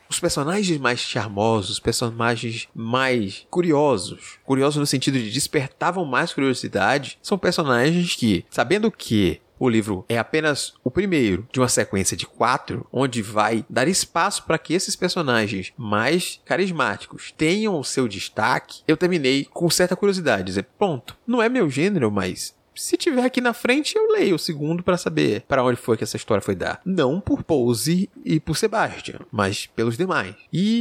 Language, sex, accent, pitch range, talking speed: Portuguese, male, Brazilian, 120-175 Hz, 170 wpm